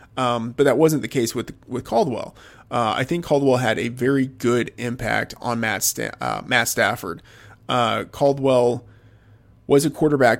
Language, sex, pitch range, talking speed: English, male, 115-130 Hz, 165 wpm